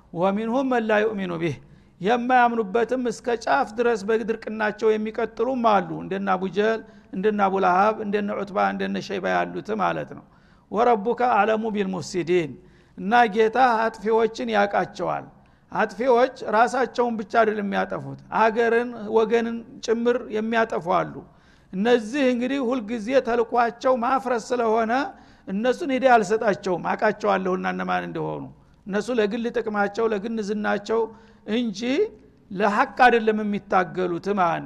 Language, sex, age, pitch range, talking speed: Amharic, male, 60-79, 210-245 Hz, 90 wpm